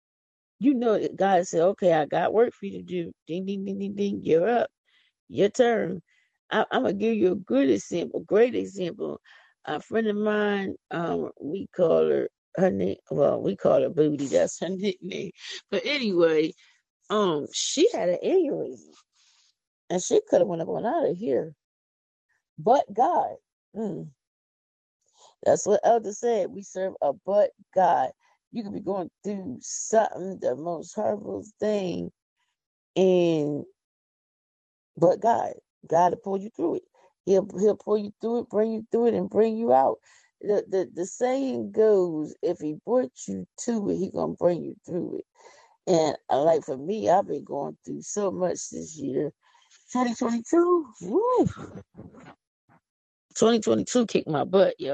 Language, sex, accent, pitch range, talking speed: English, female, American, 175-240 Hz, 155 wpm